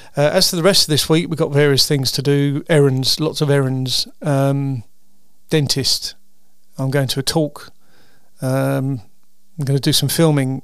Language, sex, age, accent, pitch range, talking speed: English, male, 40-59, British, 135-155 Hz, 180 wpm